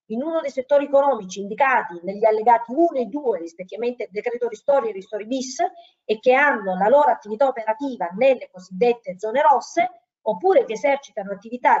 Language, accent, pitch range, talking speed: Italian, native, 205-290 Hz, 165 wpm